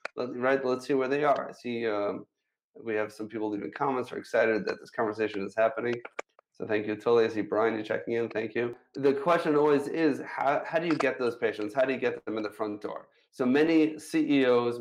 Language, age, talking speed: English, 30-49, 230 wpm